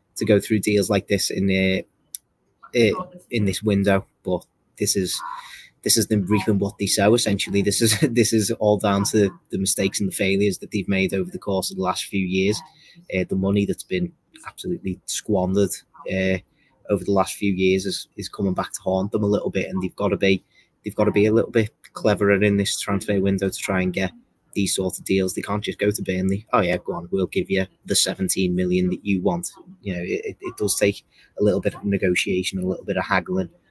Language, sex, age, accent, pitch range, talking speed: English, male, 20-39, British, 95-105 Hz, 230 wpm